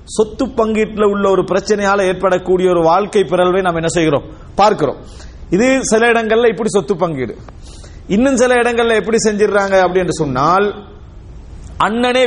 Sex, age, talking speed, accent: male, 40-59, 135 wpm, Indian